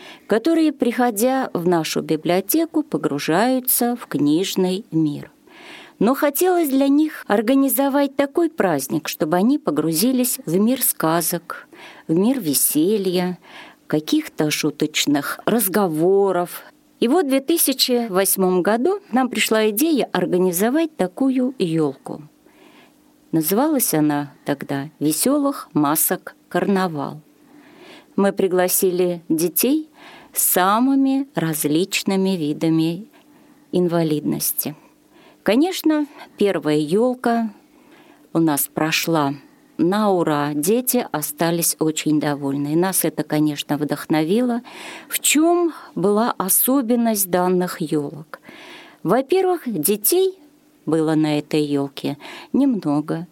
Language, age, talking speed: Russian, 40-59, 95 wpm